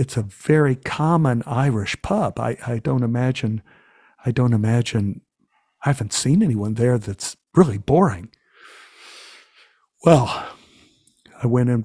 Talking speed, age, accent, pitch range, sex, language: 125 wpm, 50-69, American, 115-135 Hz, male, English